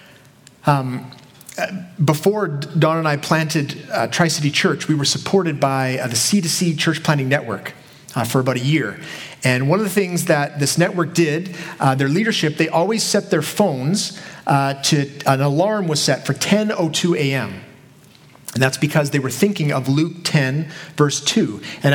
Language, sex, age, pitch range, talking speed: English, male, 30-49, 140-190 Hz, 175 wpm